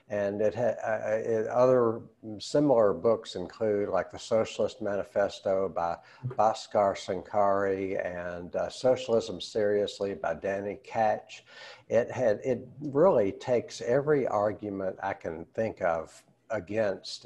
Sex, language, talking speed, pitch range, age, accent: male, English, 120 wpm, 100-120 Hz, 60-79, American